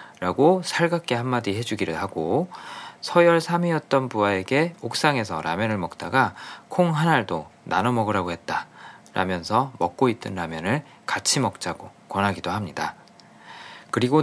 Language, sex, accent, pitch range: Korean, male, native, 95-140 Hz